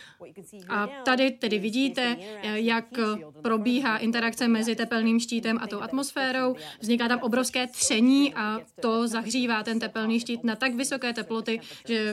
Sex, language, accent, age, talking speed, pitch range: female, Czech, native, 20-39, 140 wpm, 220-250 Hz